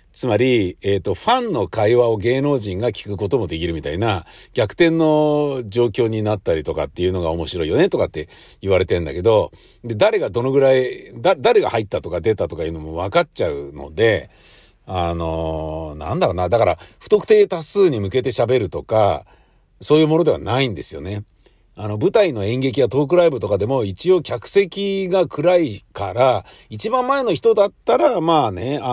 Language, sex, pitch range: Japanese, male, 100-150 Hz